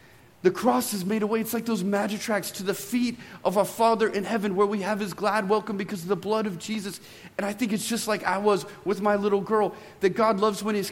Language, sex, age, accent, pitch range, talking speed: English, male, 40-59, American, 150-215 Hz, 255 wpm